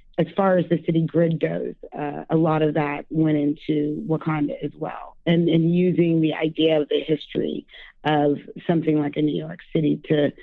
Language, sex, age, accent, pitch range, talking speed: English, female, 30-49, American, 150-170 Hz, 190 wpm